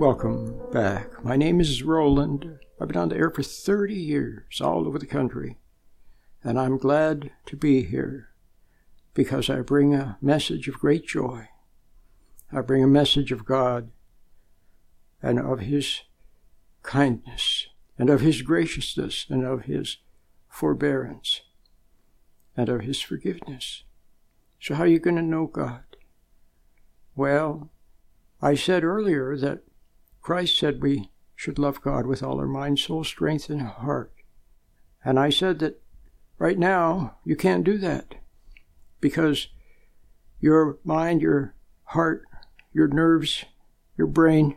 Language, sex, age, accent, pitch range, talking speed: English, male, 60-79, American, 115-155 Hz, 135 wpm